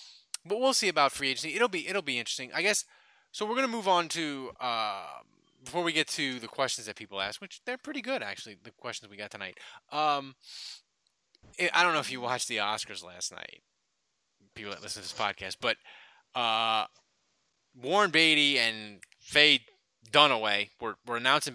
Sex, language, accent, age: male, English, American, 20-39